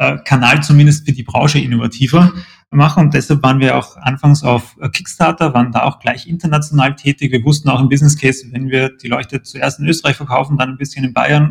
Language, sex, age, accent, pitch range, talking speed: German, male, 30-49, German, 125-150 Hz, 210 wpm